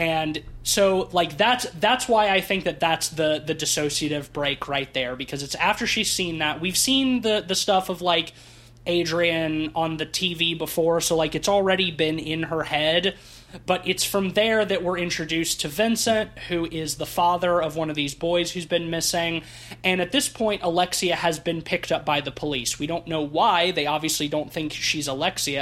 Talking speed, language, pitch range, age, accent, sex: 200 wpm, English, 145-180 Hz, 20-39, American, male